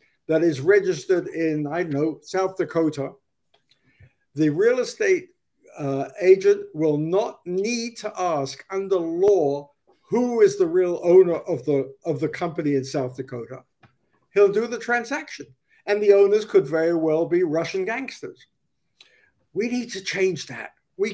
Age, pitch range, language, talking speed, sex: 60-79, 145-205 Hz, English, 150 wpm, male